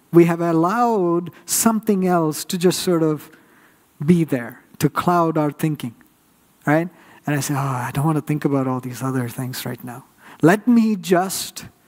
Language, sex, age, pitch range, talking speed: English, male, 50-69, 130-165 Hz, 175 wpm